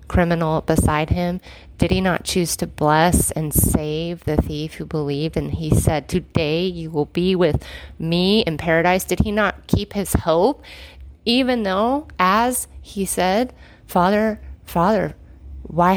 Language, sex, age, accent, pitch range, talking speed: English, female, 30-49, American, 150-195 Hz, 150 wpm